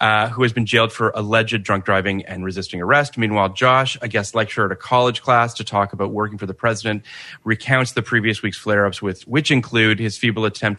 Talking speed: 215 wpm